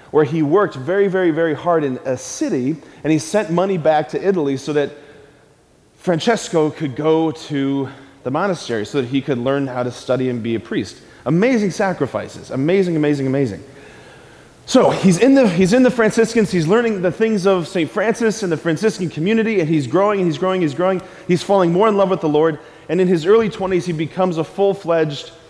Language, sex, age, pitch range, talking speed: English, male, 30-49, 140-190 Hz, 205 wpm